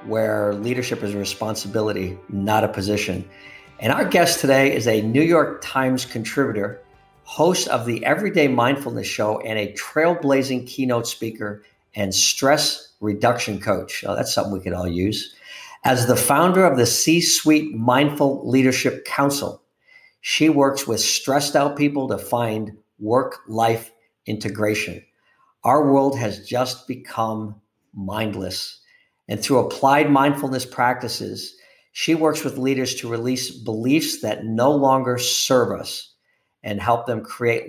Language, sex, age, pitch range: English, male, 50-69, 105-145 Hz